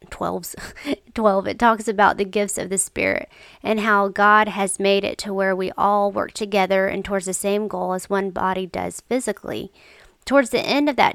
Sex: female